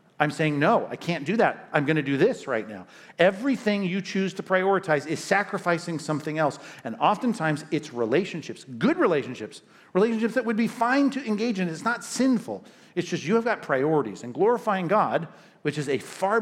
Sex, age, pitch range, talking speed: male, 50-69, 145-190 Hz, 195 wpm